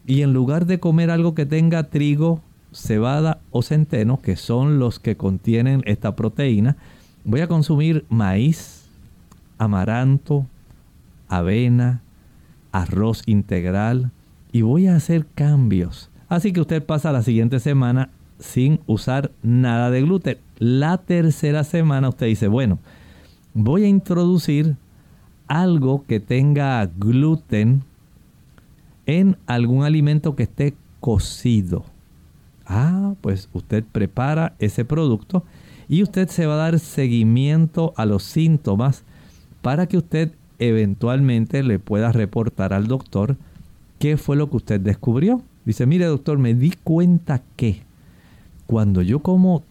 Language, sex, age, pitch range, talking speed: Spanish, male, 50-69, 105-155 Hz, 125 wpm